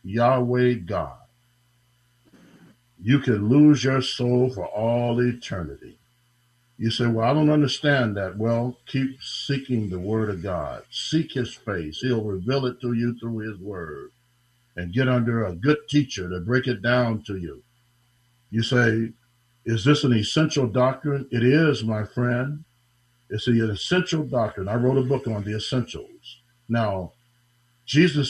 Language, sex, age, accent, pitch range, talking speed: English, male, 60-79, American, 120-140 Hz, 150 wpm